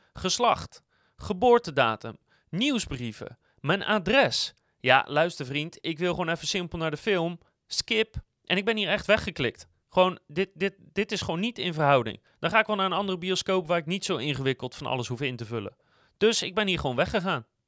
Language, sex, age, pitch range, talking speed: Dutch, male, 30-49, 130-185 Hz, 195 wpm